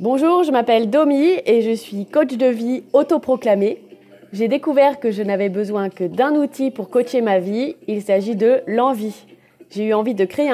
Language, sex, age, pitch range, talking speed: French, female, 20-39, 185-290 Hz, 190 wpm